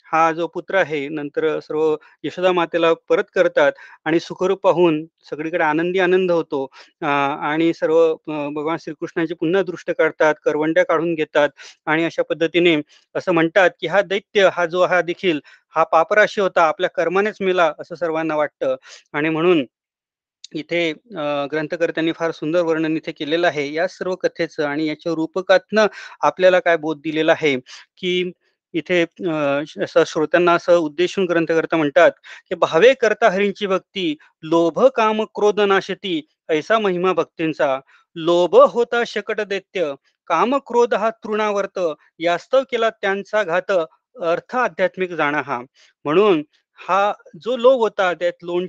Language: Marathi